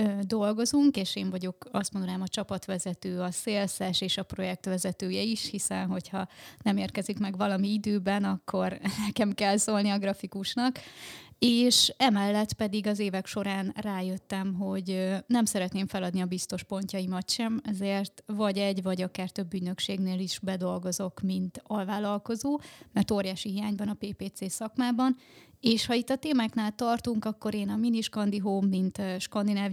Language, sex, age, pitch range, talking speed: Hungarian, female, 20-39, 190-215 Hz, 145 wpm